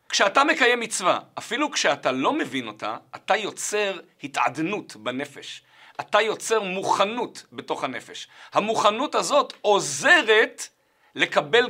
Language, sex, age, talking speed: Hebrew, male, 50-69, 110 wpm